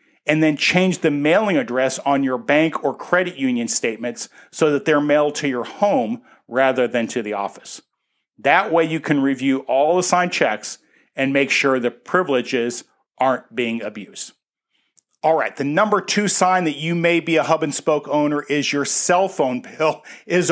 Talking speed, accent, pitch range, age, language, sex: 180 wpm, American, 140-180 Hz, 40-59, English, male